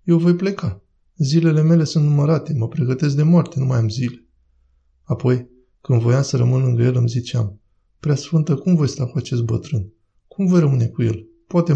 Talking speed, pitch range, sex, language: 190 wpm, 115-155 Hz, male, Romanian